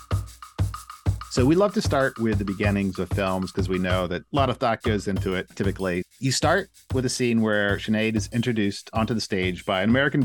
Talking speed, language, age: 215 wpm, English, 40-59